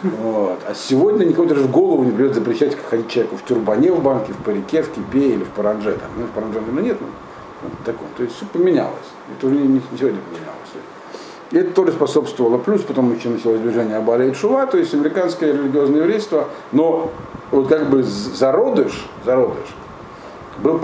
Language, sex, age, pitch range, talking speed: Russian, male, 50-69, 120-165 Hz, 180 wpm